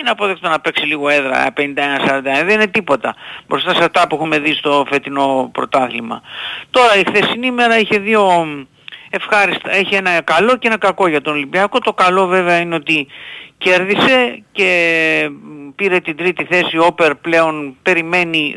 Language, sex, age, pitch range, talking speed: Greek, male, 50-69, 150-205 Hz, 160 wpm